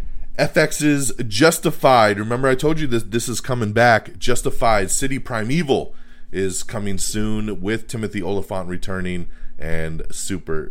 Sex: male